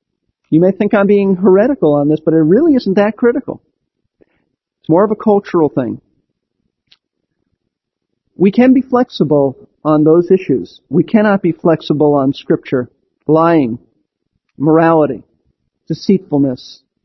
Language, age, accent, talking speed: English, 40-59, American, 125 wpm